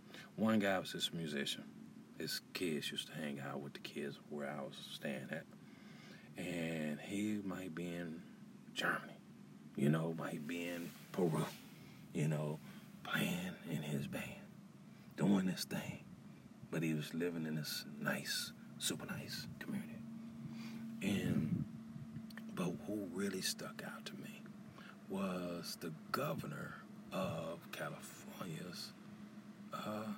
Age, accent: 40-59, American